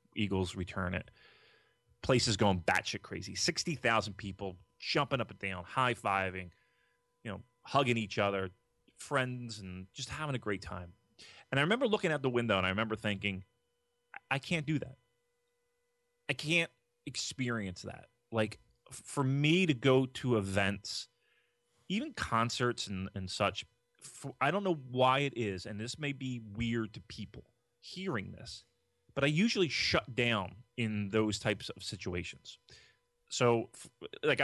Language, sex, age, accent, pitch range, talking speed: English, male, 30-49, American, 100-130 Hz, 150 wpm